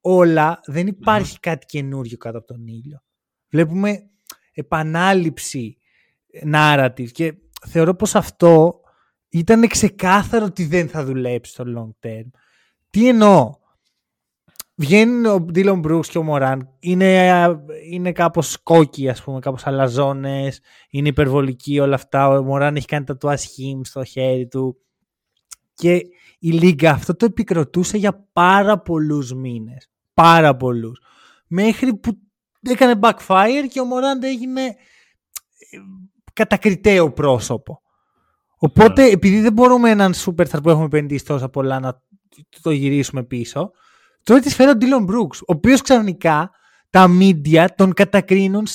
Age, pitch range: 20-39, 140-210 Hz